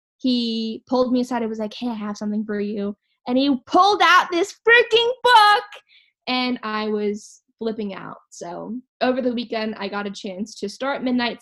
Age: 10-29